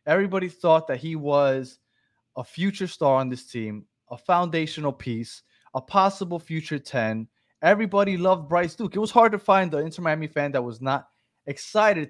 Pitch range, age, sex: 125-175 Hz, 20-39, male